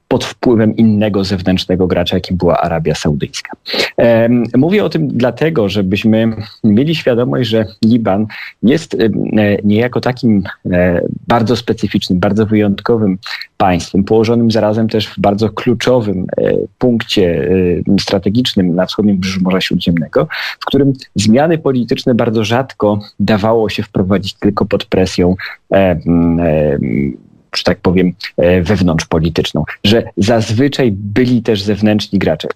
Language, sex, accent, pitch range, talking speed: Polish, male, native, 95-115 Hz, 125 wpm